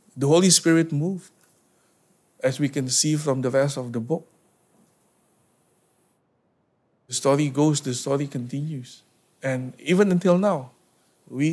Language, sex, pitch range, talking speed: English, male, 125-155 Hz, 130 wpm